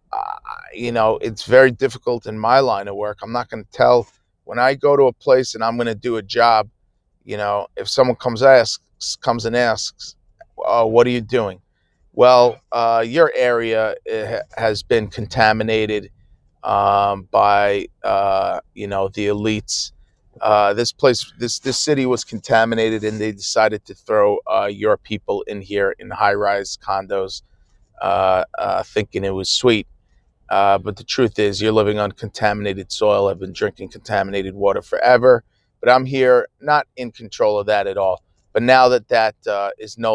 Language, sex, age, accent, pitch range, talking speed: English, male, 30-49, American, 100-125 Hz, 175 wpm